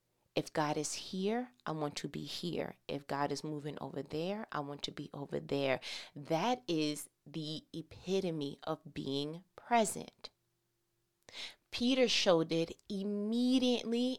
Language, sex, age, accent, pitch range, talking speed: English, female, 30-49, American, 150-205 Hz, 135 wpm